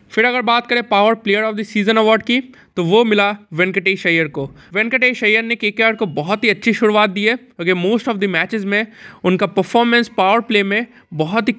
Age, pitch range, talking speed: 20-39, 180-225 Hz, 210 wpm